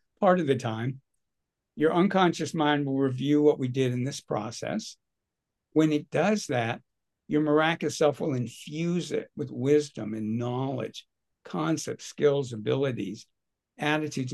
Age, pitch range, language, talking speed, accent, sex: 60-79, 115-145 Hz, English, 140 wpm, American, male